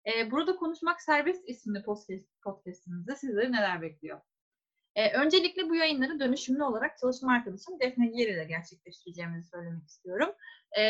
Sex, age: female, 30-49